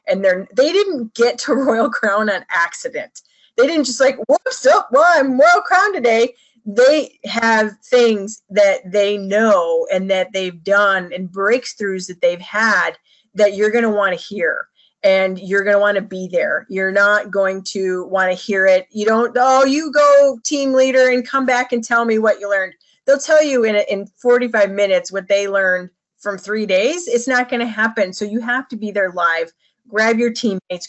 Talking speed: 205 wpm